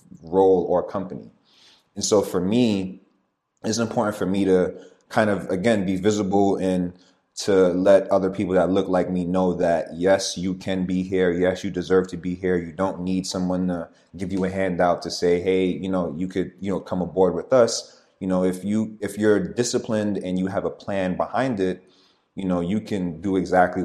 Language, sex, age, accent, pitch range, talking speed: English, male, 30-49, American, 90-100 Hz, 205 wpm